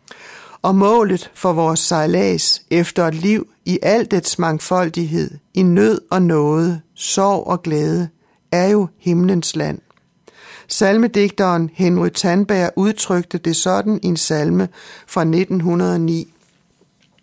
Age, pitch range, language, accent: 60-79, 170-205 Hz, Danish, native